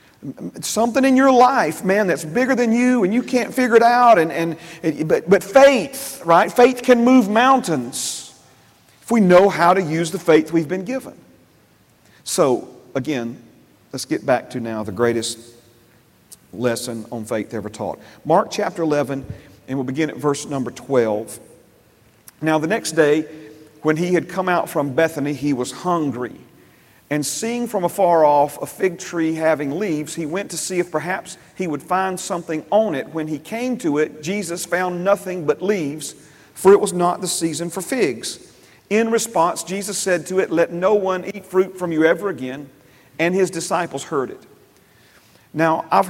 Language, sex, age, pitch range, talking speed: English, male, 40-59, 155-195 Hz, 175 wpm